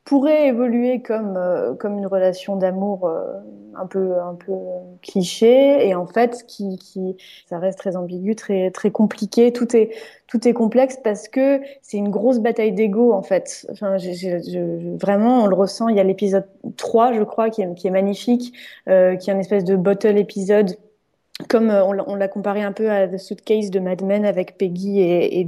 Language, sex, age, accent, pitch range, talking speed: French, female, 20-39, French, 185-220 Hz, 195 wpm